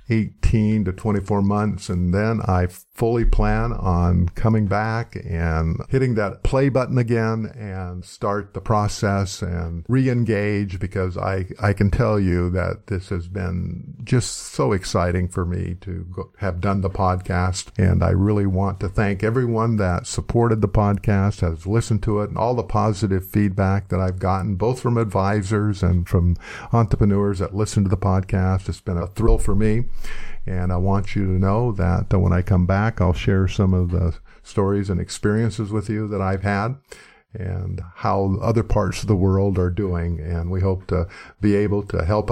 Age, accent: 50-69, American